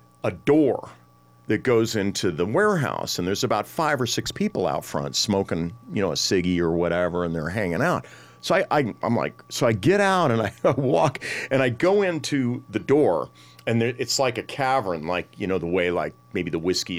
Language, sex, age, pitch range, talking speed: English, male, 40-59, 80-125 Hz, 215 wpm